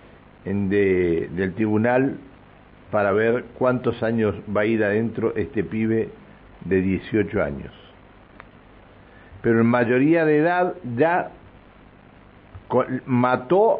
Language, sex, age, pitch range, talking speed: Spanish, male, 60-79, 105-145 Hz, 95 wpm